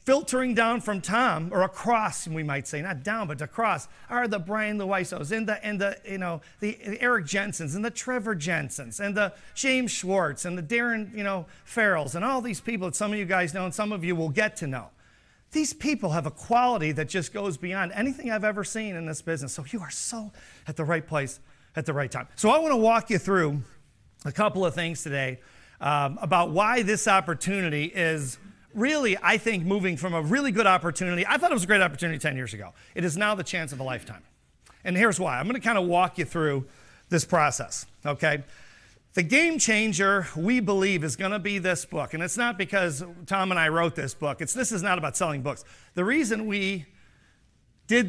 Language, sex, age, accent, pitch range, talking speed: English, male, 40-59, American, 155-215 Hz, 220 wpm